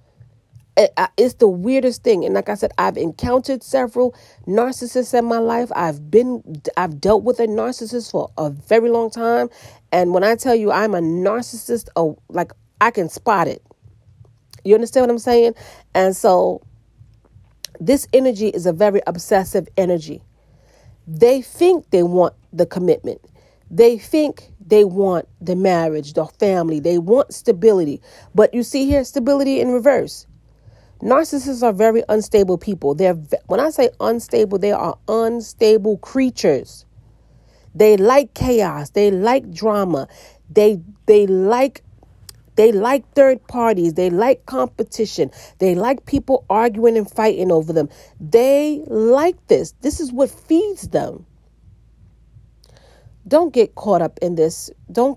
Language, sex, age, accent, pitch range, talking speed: English, female, 40-59, American, 175-250 Hz, 145 wpm